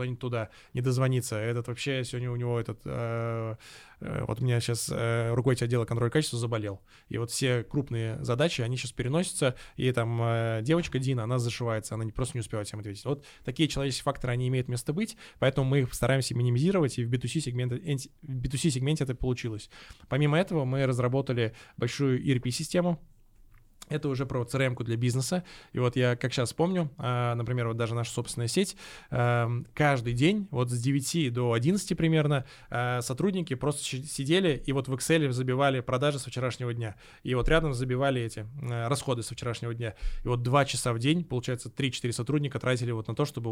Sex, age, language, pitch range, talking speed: male, 20-39, Russian, 120-140 Hz, 185 wpm